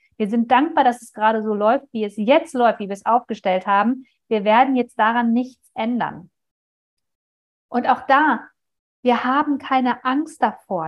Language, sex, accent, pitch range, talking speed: German, female, German, 195-255 Hz, 170 wpm